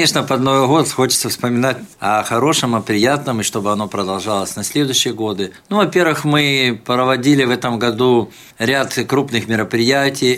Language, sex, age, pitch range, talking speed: Russian, male, 50-69, 115-135 Hz, 155 wpm